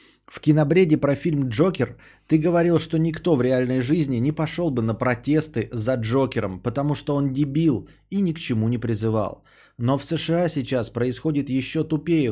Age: 20-39